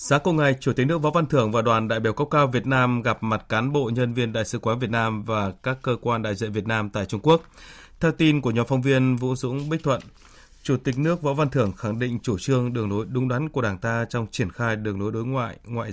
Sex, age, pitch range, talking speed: male, 20-39, 110-135 Hz, 280 wpm